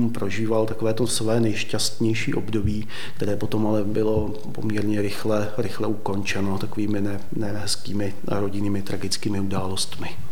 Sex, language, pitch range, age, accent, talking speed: male, Czech, 105-115 Hz, 30-49, native, 110 wpm